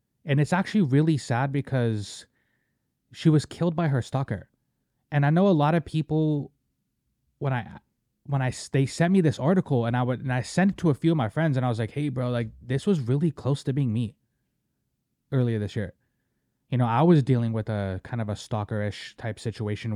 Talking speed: 215 wpm